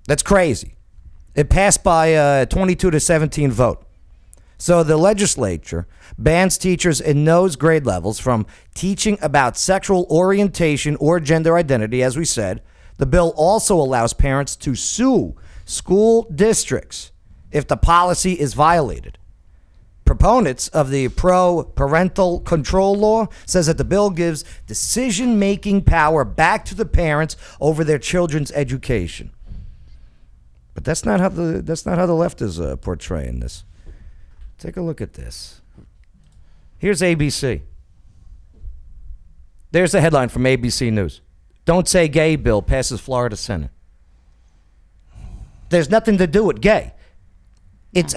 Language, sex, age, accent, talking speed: English, male, 40-59, American, 135 wpm